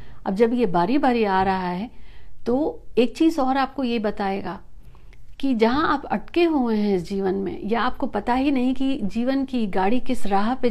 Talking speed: 200 wpm